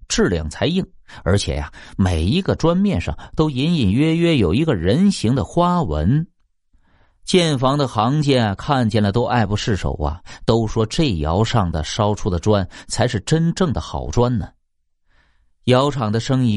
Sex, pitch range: male, 95-140 Hz